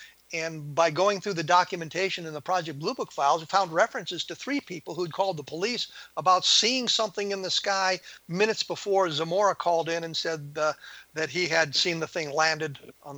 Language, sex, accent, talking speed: English, male, American, 205 wpm